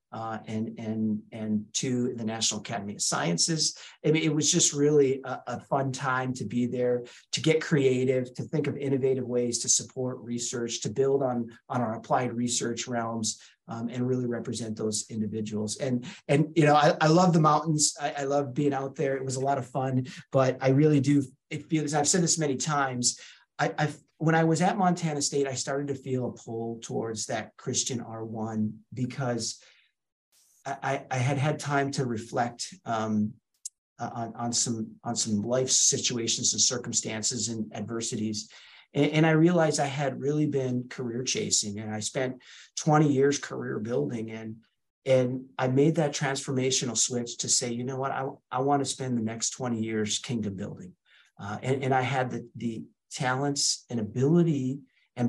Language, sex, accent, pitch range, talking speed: English, male, American, 115-145 Hz, 185 wpm